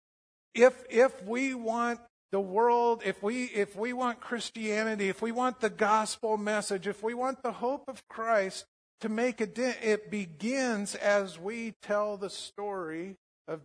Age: 50-69